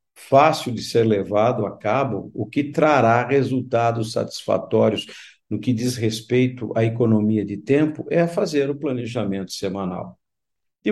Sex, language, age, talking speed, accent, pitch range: male, Portuguese, 50-69, 135 wpm, Brazilian, 115-150 Hz